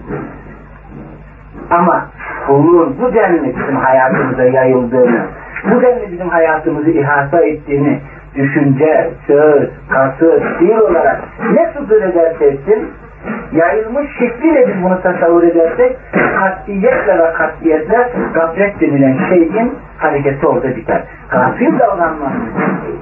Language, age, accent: Turkish, 60-79, native